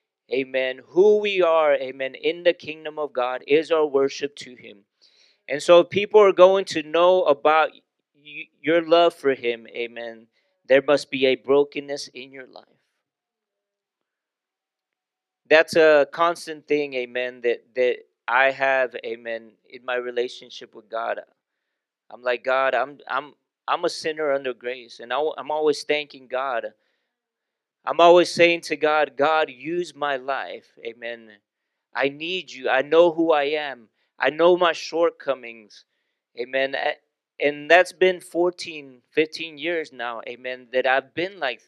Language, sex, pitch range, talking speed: English, male, 125-170 Hz, 145 wpm